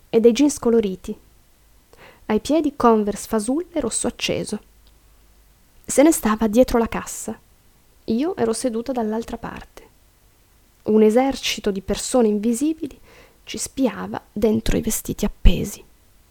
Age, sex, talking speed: 20-39, female, 120 wpm